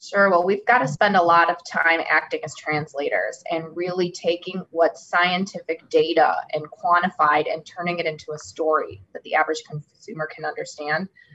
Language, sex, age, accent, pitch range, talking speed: English, female, 20-39, American, 165-195 Hz, 175 wpm